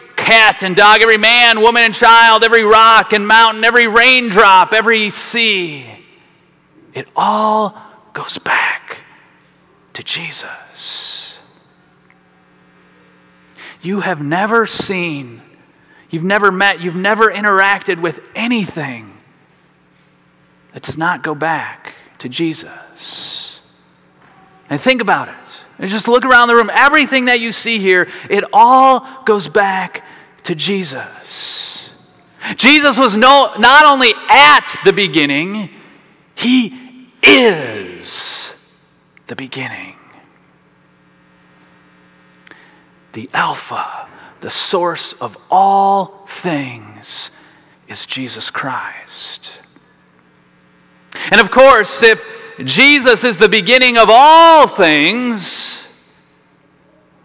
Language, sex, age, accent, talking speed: English, male, 30-49, American, 100 wpm